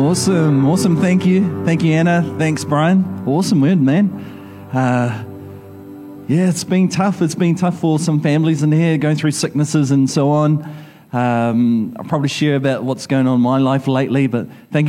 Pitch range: 120-160 Hz